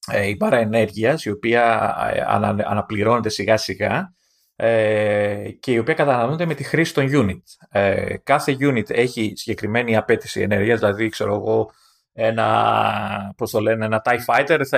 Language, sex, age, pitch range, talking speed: Greek, male, 30-49, 110-140 Hz, 140 wpm